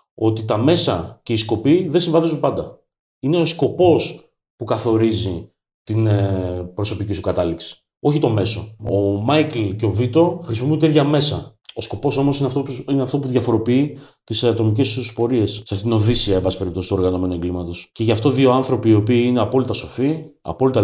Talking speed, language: 175 wpm, Greek